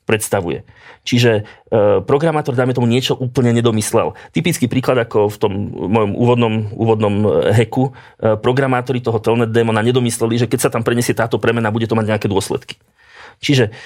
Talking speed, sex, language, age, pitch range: 160 wpm, male, Slovak, 30-49, 110-125 Hz